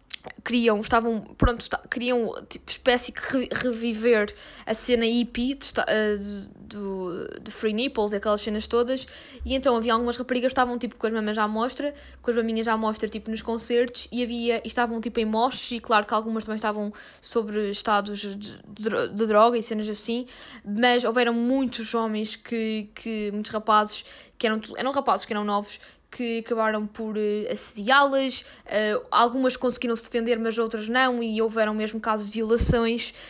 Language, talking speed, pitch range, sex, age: Portuguese, 175 wpm, 220-250 Hz, female, 10-29